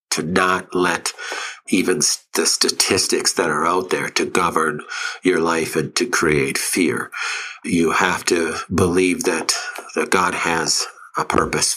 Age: 60-79